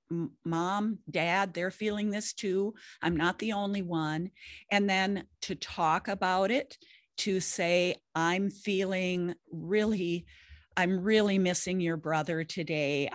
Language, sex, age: English, female, 50-69